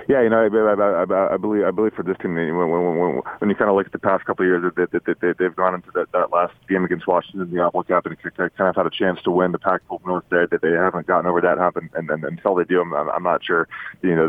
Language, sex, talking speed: English, male, 315 wpm